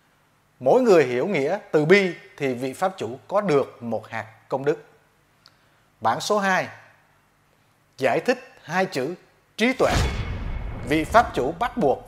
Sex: male